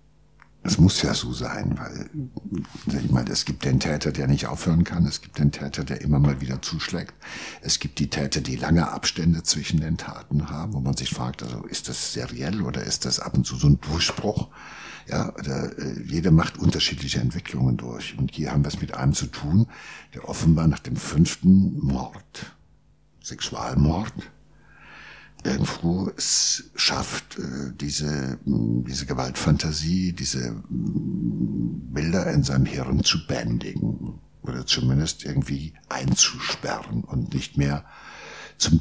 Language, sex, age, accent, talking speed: German, male, 60-79, German, 150 wpm